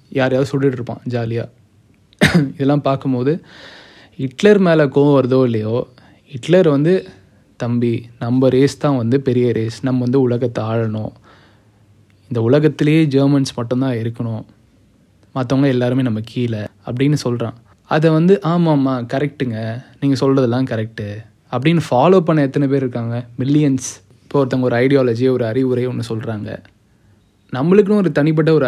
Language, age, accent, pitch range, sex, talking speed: Tamil, 20-39, native, 115-145 Hz, male, 130 wpm